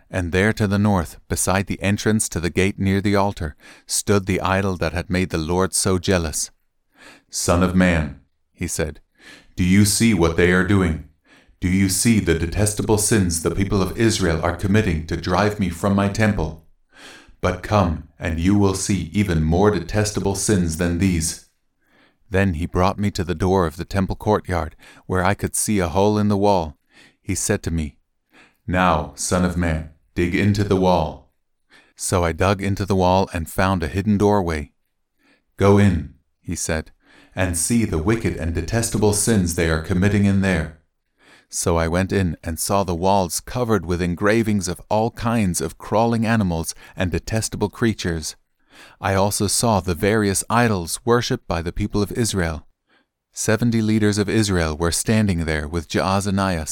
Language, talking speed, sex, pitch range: English, 175 wpm, male, 85-105 Hz